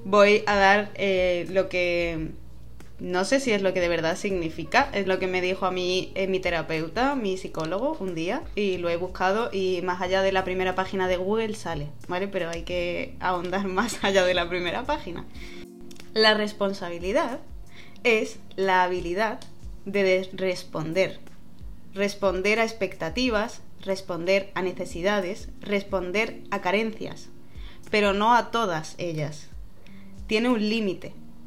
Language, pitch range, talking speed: Spanish, 180-220 Hz, 150 wpm